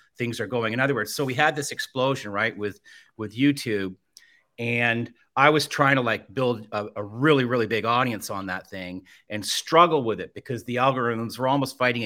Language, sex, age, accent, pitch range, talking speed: English, male, 40-59, American, 105-130 Hz, 205 wpm